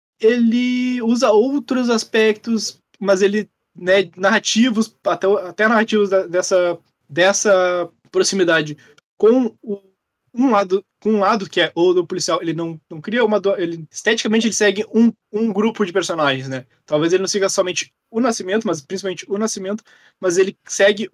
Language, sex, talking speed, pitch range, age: Portuguese, male, 160 wpm, 175-220 Hz, 20-39